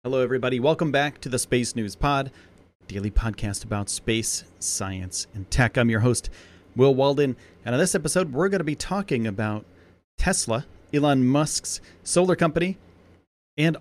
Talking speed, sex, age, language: 165 wpm, male, 30-49, English